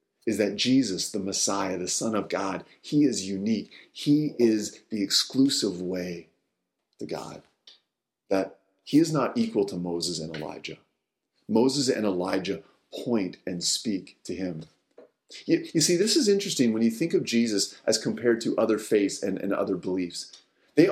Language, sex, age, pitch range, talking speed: English, male, 40-59, 95-145 Hz, 165 wpm